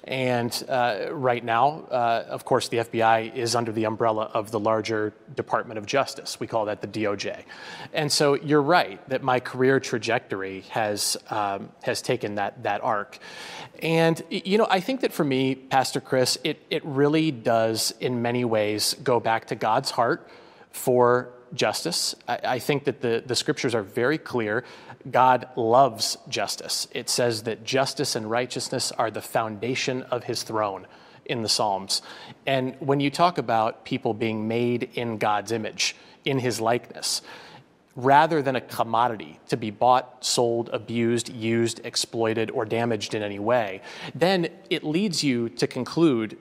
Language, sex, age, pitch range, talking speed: English, male, 30-49, 115-135 Hz, 165 wpm